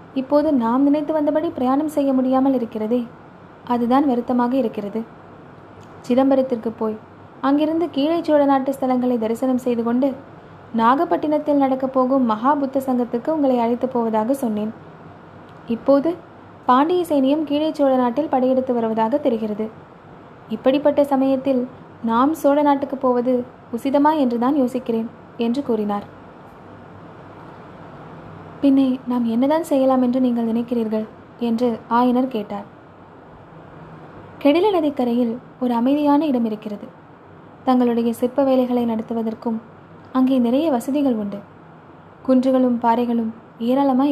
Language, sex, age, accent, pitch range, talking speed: Tamil, female, 20-39, native, 235-280 Hz, 105 wpm